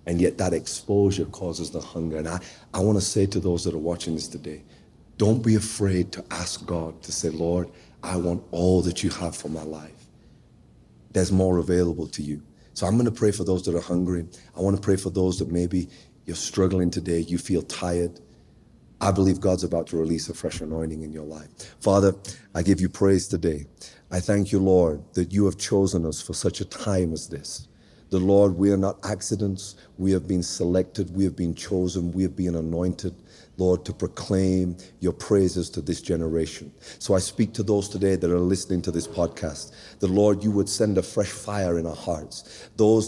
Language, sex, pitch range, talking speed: English, male, 85-105 Hz, 210 wpm